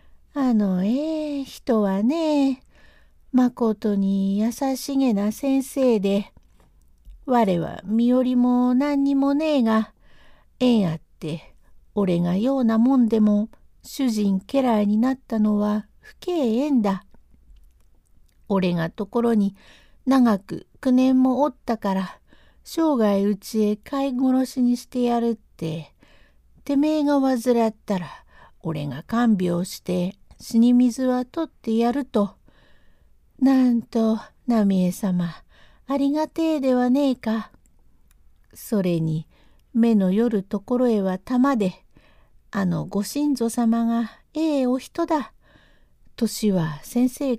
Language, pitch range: Japanese, 195-255 Hz